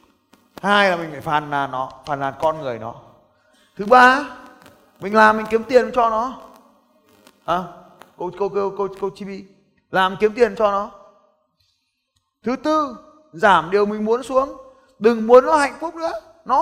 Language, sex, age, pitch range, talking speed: Vietnamese, male, 20-39, 175-255 Hz, 175 wpm